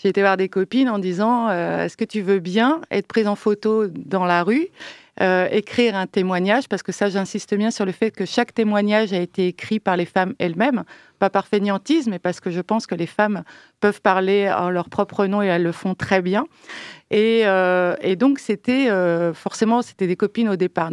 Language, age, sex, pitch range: French, 30-49, female, 190-225 Hz